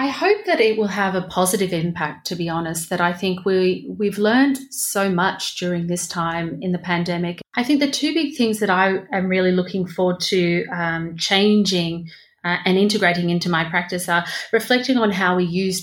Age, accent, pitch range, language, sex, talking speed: 30-49, Australian, 165-195 Hz, English, female, 205 wpm